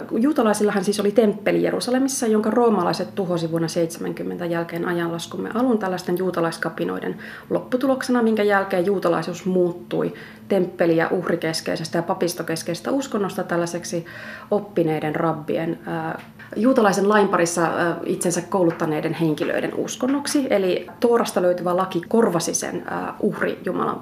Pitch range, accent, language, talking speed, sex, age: 175-225 Hz, native, Finnish, 105 wpm, female, 30-49